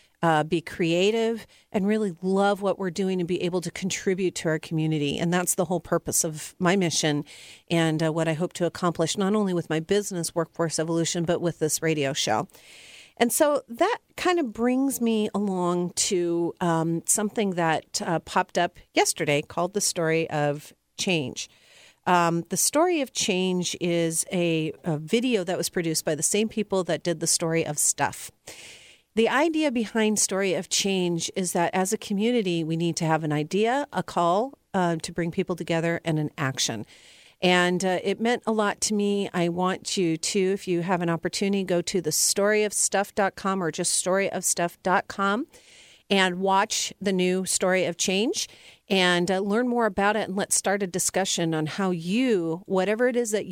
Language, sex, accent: English, female, American